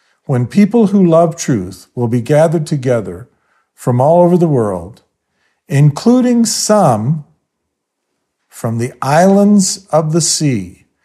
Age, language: 50-69, English